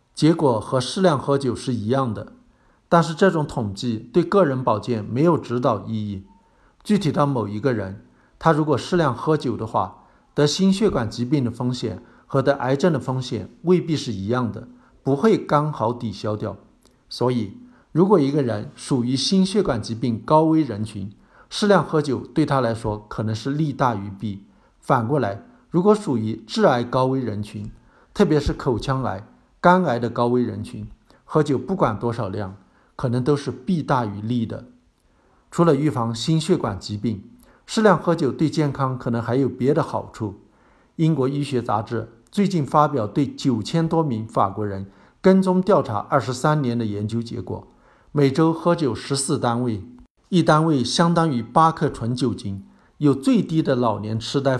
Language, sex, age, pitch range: Chinese, male, 60-79, 115-155 Hz